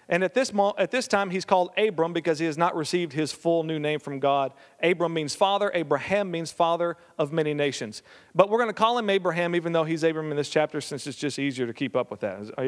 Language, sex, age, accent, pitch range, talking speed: English, male, 40-59, American, 170-235 Hz, 255 wpm